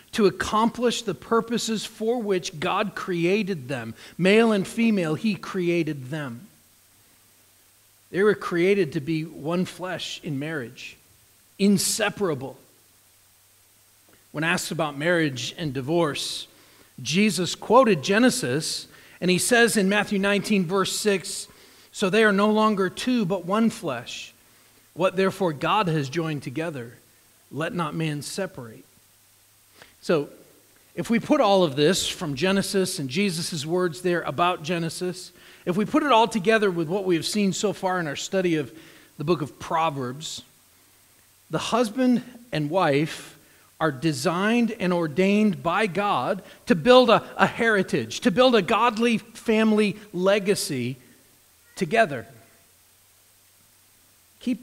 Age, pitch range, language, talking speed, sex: 40-59, 130-205 Hz, English, 130 wpm, male